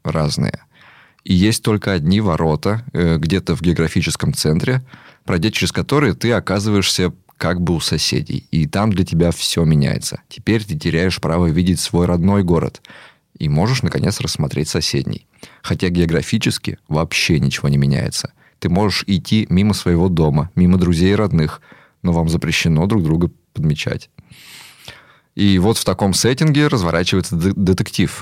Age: 20-39